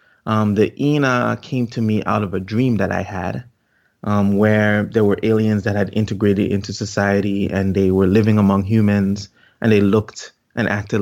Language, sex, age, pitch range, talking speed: English, male, 30-49, 100-120 Hz, 185 wpm